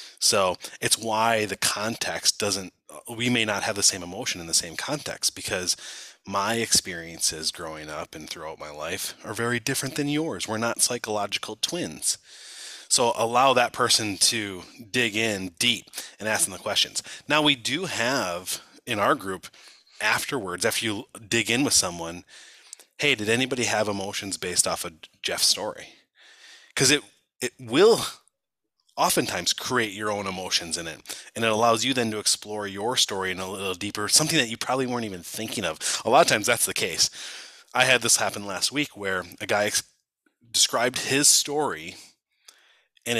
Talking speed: 170 wpm